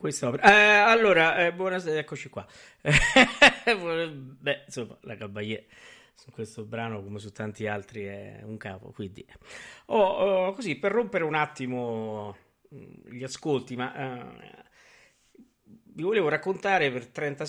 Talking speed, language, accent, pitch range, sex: 125 wpm, Italian, native, 110-145 Hz, male